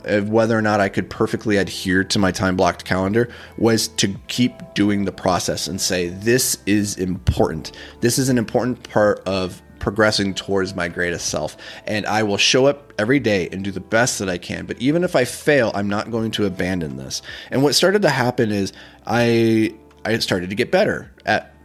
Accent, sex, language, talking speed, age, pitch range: American, male, English, 195 wpm, 30-49, 95-115 Hz